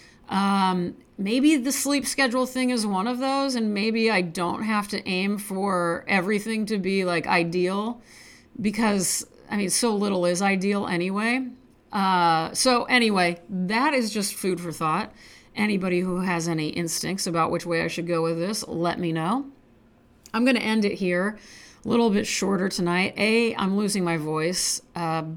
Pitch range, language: 175-220 Hz, English